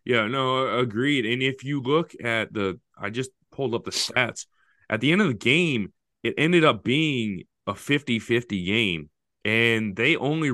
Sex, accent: male, American